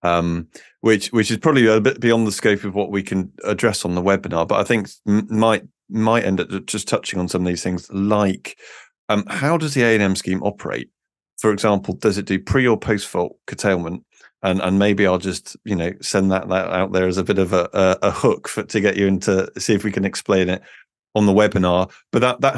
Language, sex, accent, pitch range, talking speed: English, male, British, 95-110 Hz, 230 wpm